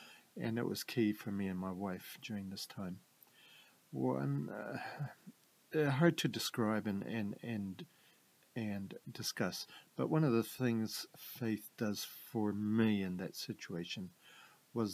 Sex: male